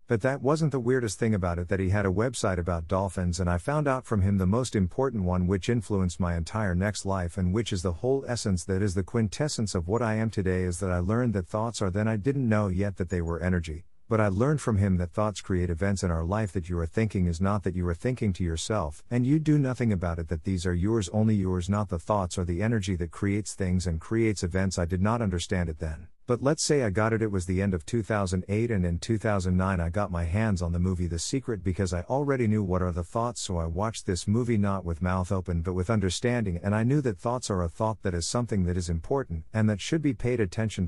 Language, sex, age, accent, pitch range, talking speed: English, male, 50-69, American, 90-115 Hz, 265 wpm